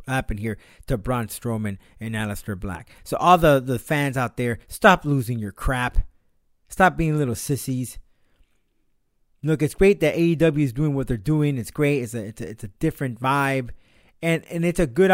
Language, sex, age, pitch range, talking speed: English, male, 30-49, 120-175 Hz, 190 wpm